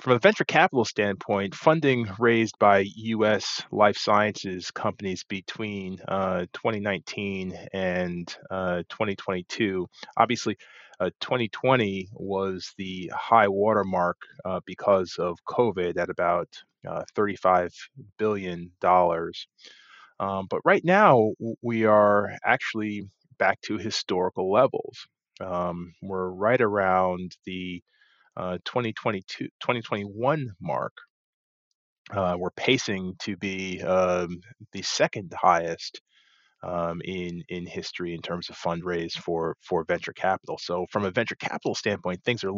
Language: English